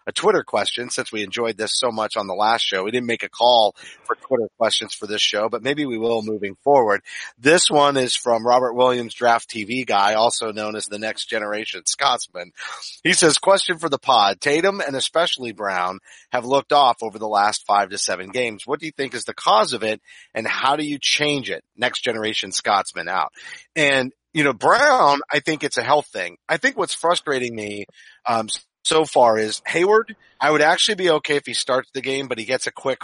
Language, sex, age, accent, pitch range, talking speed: English, male, 30-49, American, 115-145 Hz, 220 wpm